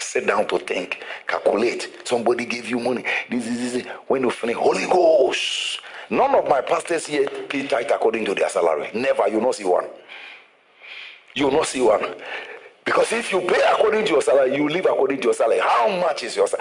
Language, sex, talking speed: English, male, 210 wpm